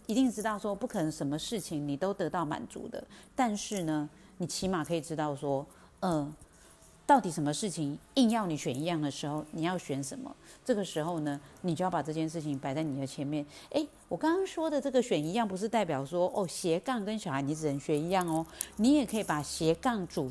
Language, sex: Chinese, female